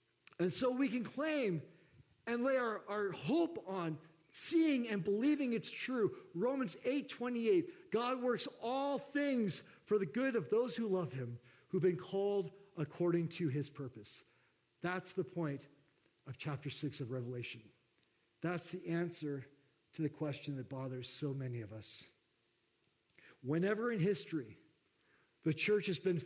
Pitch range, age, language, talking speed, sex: 155-220 Hz, 50-69, English, 150 wpm, male